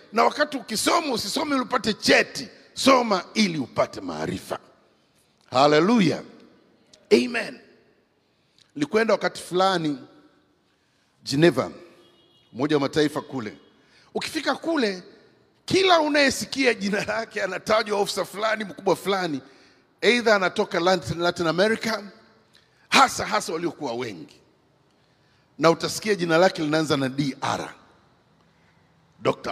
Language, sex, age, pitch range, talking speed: English, male, 50-69, 175-250 Hz, 95 wpm